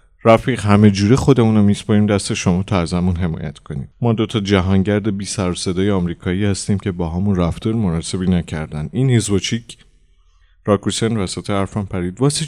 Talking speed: 150 wpm